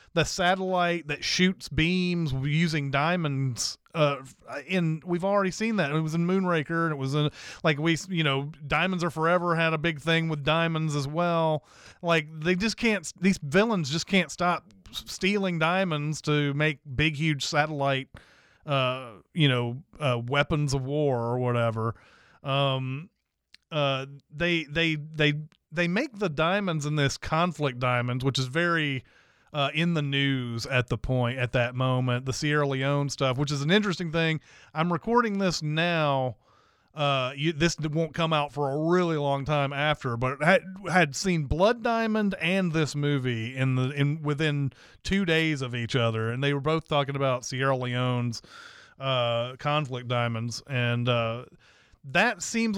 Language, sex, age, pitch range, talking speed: English, male, 30-49, 135-170 Hz, 165 wpm